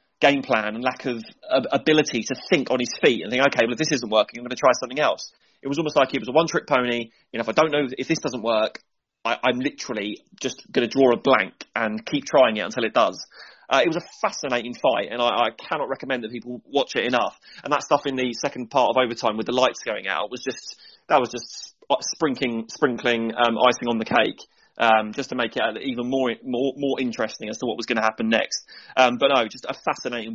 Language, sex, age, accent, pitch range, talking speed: English, male, 30-49, British, 115-135 Hz, 245 wpm